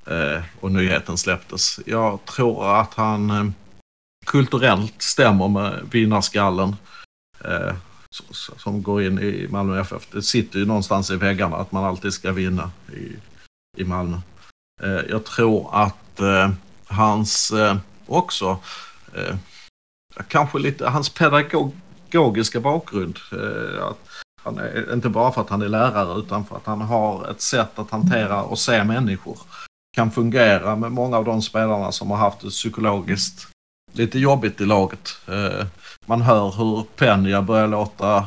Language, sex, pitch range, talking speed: Swedish, male, 100-115 Hz, 135 wpm